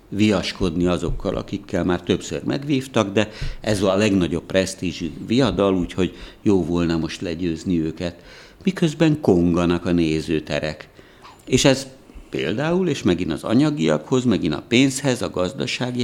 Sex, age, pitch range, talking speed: male, 60-79, 90-115 Hz, 125 wpm